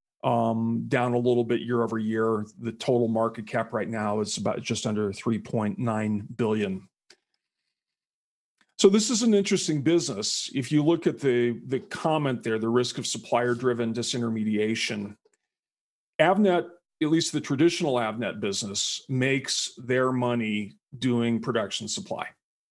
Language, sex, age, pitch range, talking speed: English, male, 40-59, 115-135 Hz, 135 wpm